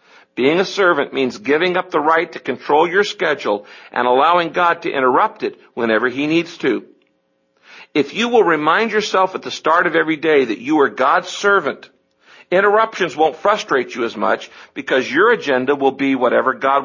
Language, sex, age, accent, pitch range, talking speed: English, male, 60-79, American, 145-200 Hz, 180 wpm